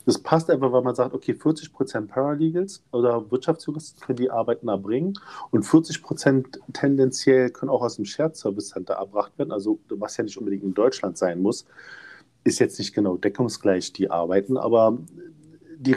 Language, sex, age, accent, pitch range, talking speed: German, male, 40-59, German, 120-145 Hz, 165 wpm